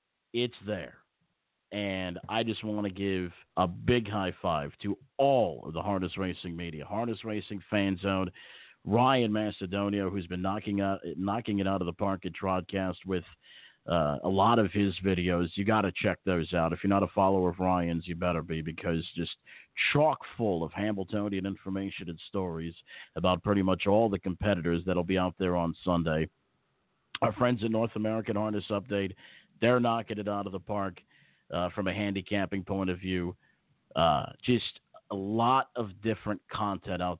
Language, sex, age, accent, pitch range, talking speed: English, male, 50-69, American, 85-105 Hz, 175 wpm